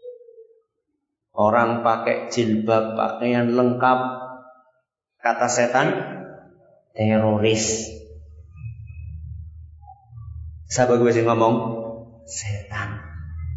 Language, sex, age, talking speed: Malay, male, 50-69, 60 wpm